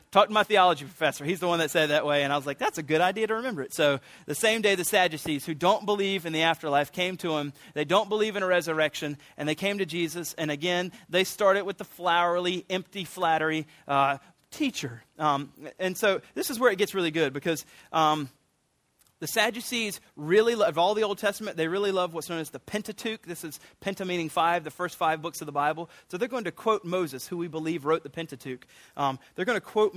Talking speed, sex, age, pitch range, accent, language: 230 wpm, male, 30-49, 145-185 Hz, American, English